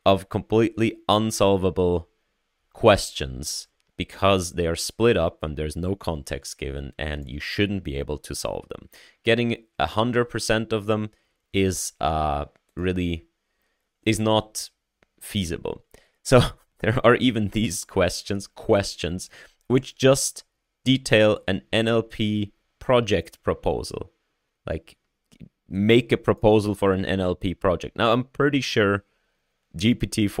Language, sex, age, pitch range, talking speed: English, male, 30-49, 85-110 Hz, 115 wpm